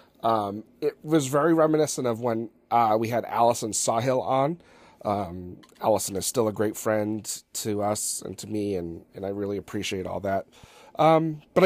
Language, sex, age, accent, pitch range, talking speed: English, male, 40-59, American, 110-155 Hz, 175 wpm